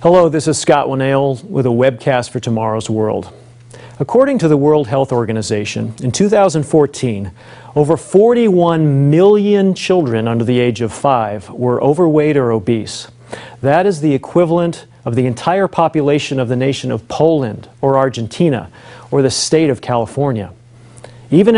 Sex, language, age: male, English, 40-59